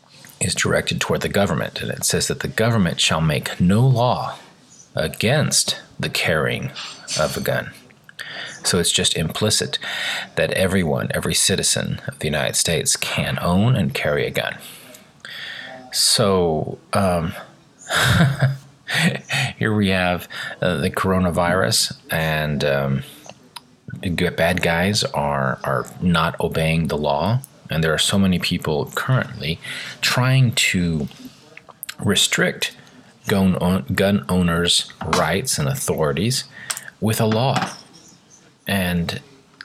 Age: 40-59